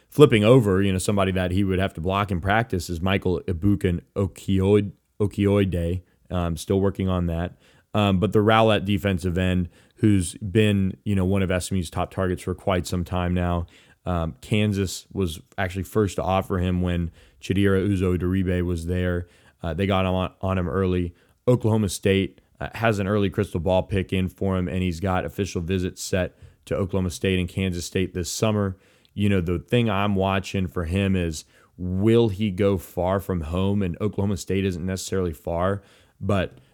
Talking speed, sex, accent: 180 wpm, male, American